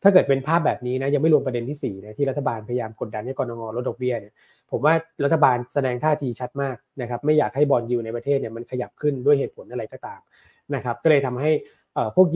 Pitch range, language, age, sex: 120-145 Hz, Thai, 20-39, male